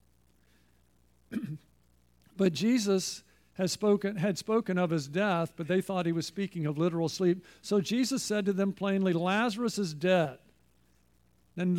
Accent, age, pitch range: American, 50-69, 160-200 Hz